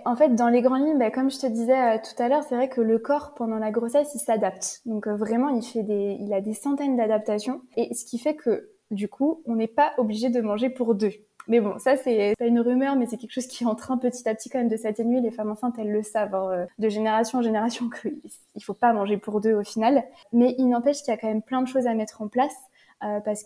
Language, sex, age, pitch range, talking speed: French, female, 20-39, 220-255 Hz, 275 wpm